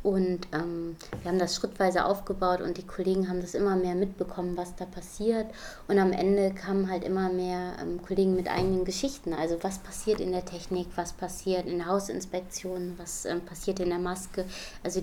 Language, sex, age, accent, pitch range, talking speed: German, female, 20-39, German, 180-200 Hz, 190 wpm